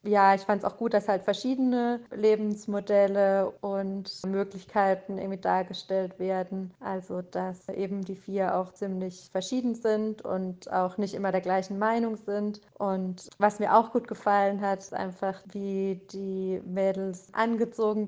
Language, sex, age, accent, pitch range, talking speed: German, female, 30-49, German, 190-215 Hz, 150 wpm